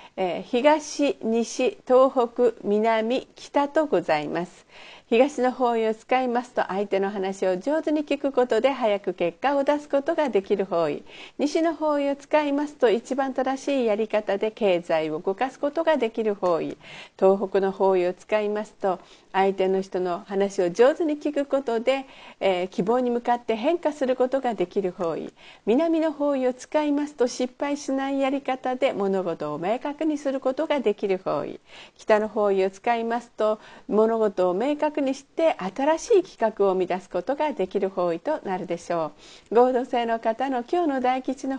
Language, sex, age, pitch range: Japanese, female, 50-69, 195-275 Hz